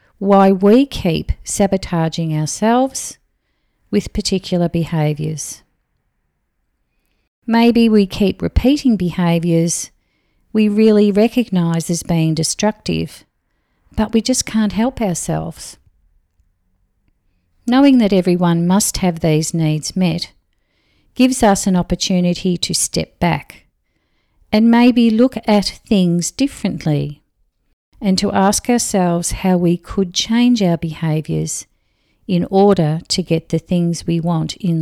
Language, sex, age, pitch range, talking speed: English, female, 50-69, 160-210 Hz, 110 wpm